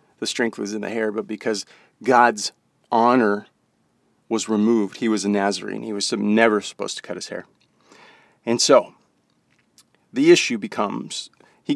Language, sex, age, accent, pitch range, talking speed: English, male, 40-59, American, 110-155 Hz, 155 wpm